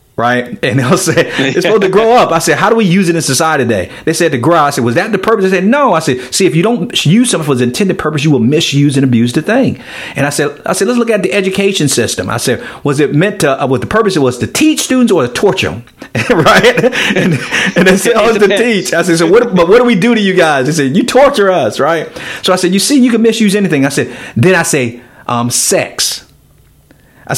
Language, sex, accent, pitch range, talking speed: English, male, American, 150-220 Hz, 265 wpm